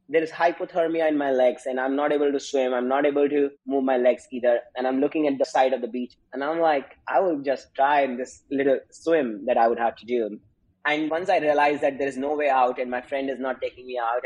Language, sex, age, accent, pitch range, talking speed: English, male, 20-39, Indian, 135-165 Hz, 265 wpm